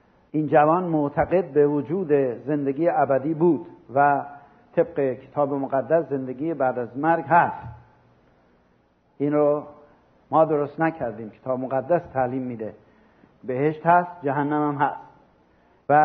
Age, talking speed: 50-69, 120 wpm